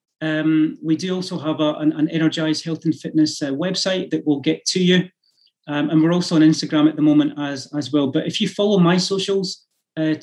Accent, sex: British, male